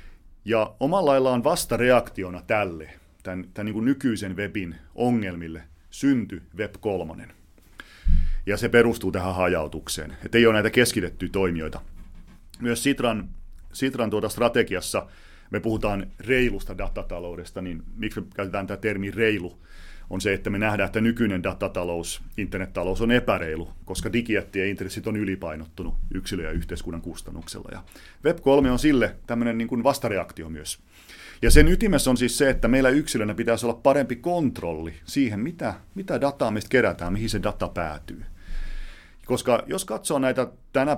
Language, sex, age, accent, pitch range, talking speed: Finnish, male, 40-59, native, 85-115 Hz, 145 wpm